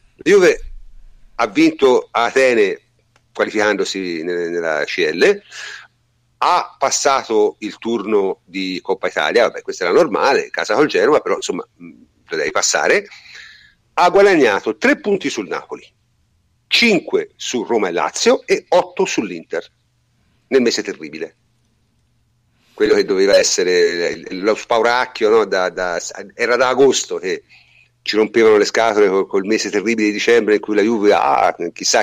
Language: Italian